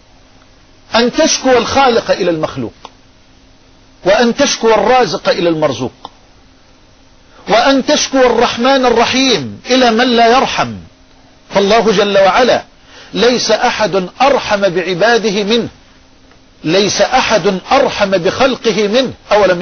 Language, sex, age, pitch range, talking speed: Arabic, male, 50-69, 175-240 Hz, 100 wpm